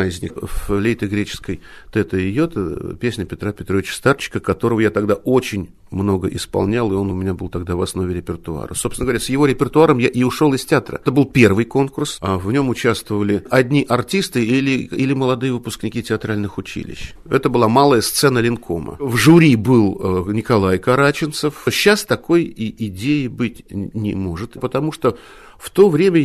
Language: Russian